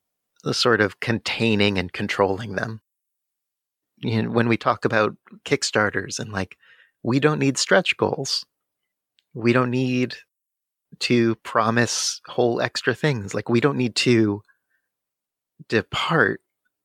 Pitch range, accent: 100-120 Hz, American